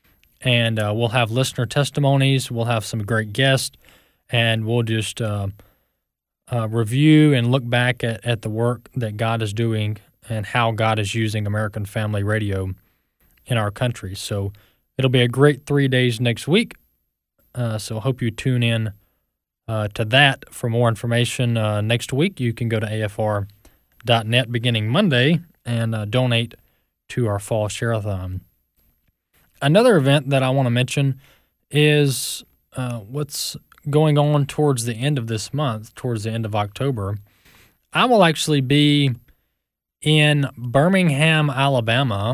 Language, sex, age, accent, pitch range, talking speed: English, male, 20-39, American, 110-140 Hz, 155 wpm